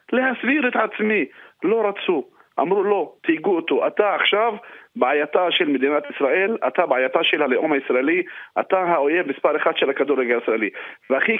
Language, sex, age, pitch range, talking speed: Hebrew, male, 40-59, 145-240 Hz, 145 wpm